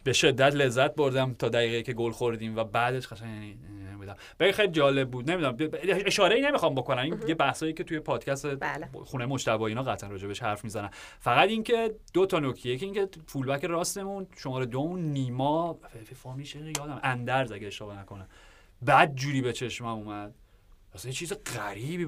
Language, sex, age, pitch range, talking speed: Persian, male, 30-49, 110-145 Hz, 170 wpm